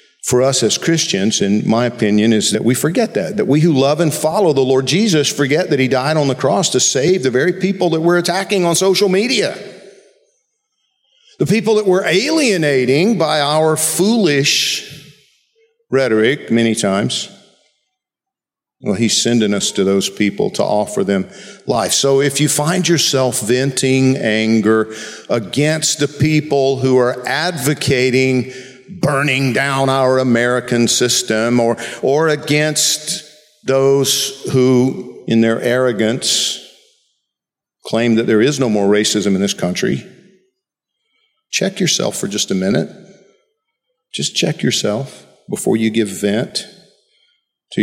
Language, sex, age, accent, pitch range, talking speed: English, male, 50-69, American, 120-175 Hz, 140 wpm